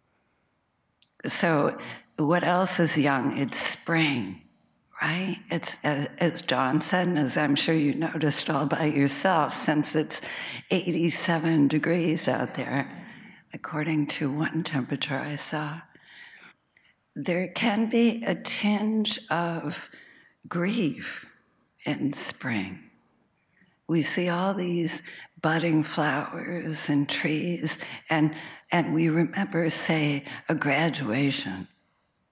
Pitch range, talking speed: 150-175 Hz, 105 wpm